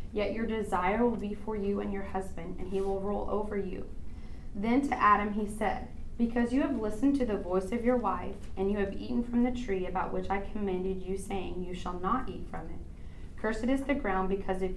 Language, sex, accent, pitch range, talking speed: English, female, American, 180-205 Hz, 230 wpm